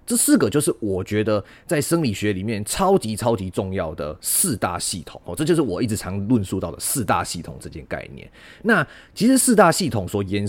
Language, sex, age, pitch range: Chinese, male, 30-49, 100-130 Hz